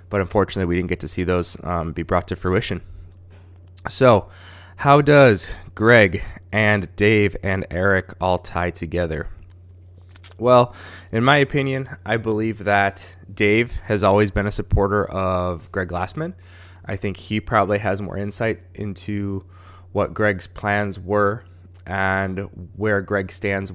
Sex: male